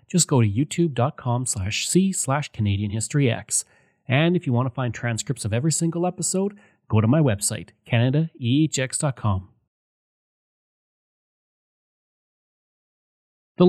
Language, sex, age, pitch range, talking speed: English, male, 30-49, 110-155 Hz, 110 wpm